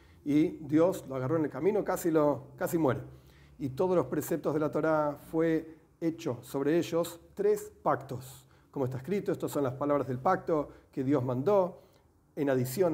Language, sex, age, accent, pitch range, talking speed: Spanish, male, 40-59, Argentinian, 135-170 Hz, 175 wpm